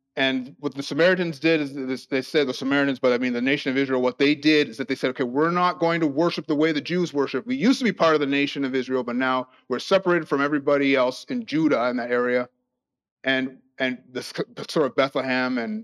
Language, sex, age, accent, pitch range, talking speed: English, male, 30-49, American, 125-165 Hz, 245 wpm